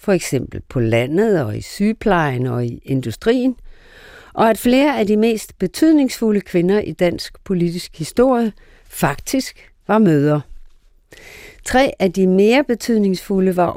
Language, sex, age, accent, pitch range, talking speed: Danish, female, 50-69, native, 175-230 Hz, 135 wpm